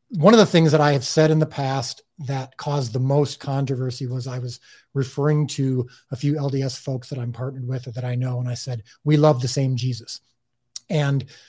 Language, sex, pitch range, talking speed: English, male, 130-155 Hz, 220 wpm